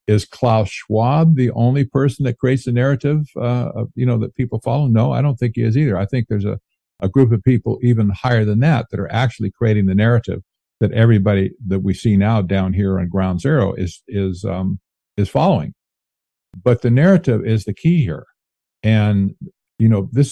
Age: 50-69